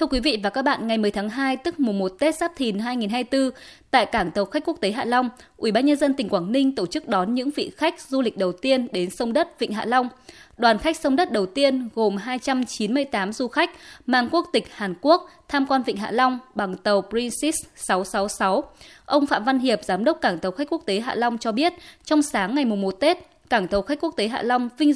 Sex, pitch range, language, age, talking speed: female, 205-285 Hz, Vietnamese, 20-39, 245 wpm